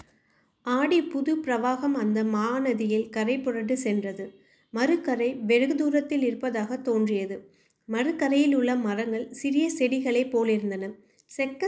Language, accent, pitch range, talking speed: Tamil, native, 225-270 Hz, 105 wpm